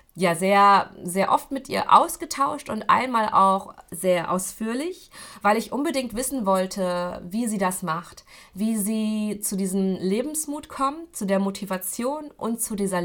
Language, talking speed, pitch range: German, 150 wpm, 175-220 Hz